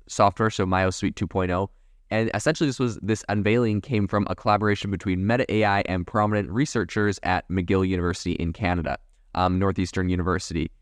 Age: 20-39